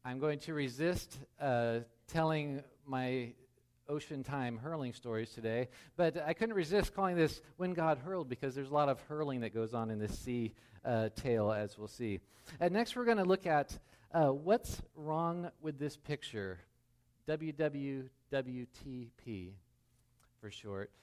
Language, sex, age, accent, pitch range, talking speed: English, male, 40-59, American, 115-155 Hz, 155 wpm